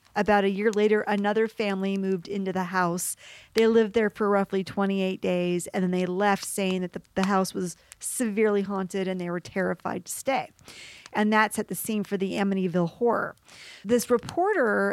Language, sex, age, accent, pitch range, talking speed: English, female, 40-59, American, 195-230 Hz, 185 wpm